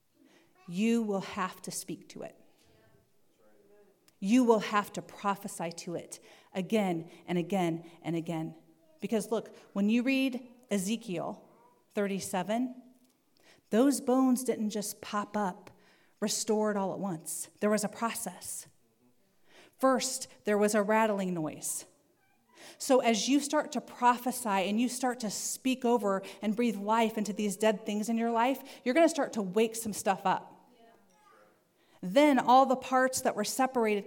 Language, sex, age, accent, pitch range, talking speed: English, female, 40-59, American, 190-245 Hz, 150 wpm